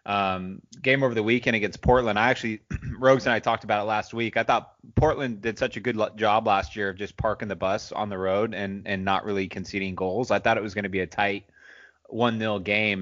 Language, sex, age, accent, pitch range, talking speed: English, male, 30-49, American, 100-115 Hz, 250 wpm